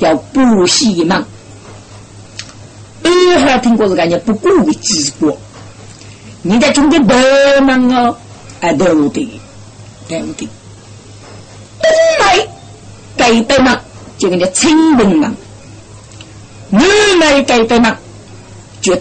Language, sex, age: Chinese, female, 50-69